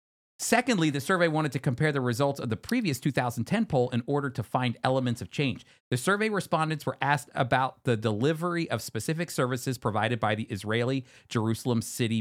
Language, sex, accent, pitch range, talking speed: English, male, American, 120-155 Hz, 180 wpm